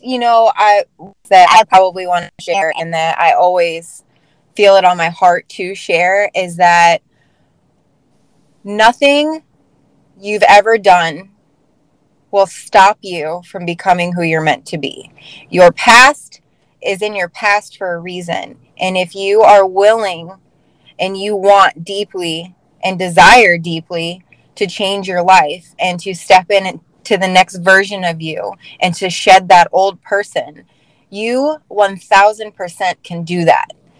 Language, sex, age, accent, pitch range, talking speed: English, female, 20-39, American, 175-210 Hz, 145 wpm